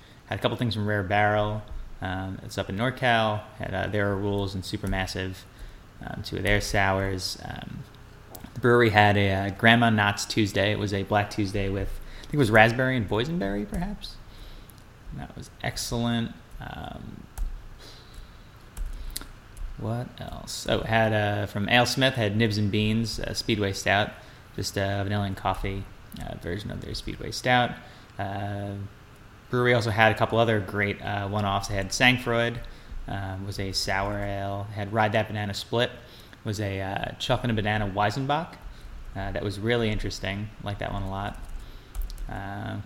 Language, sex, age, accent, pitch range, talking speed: English, male, 30-49, American, 100-115 Hz, 170 wpm